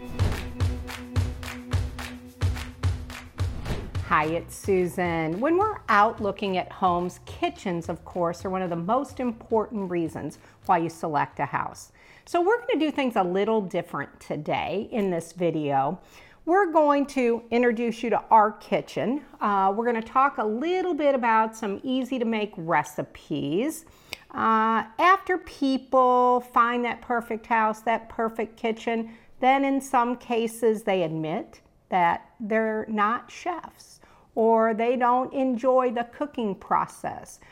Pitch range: 180-260 Hz